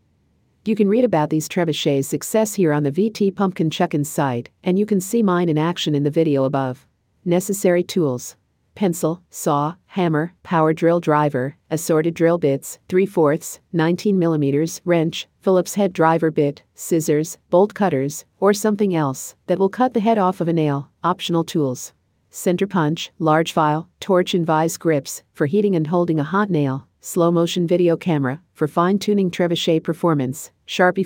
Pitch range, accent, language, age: 140-180 Hz, American, English, 50-69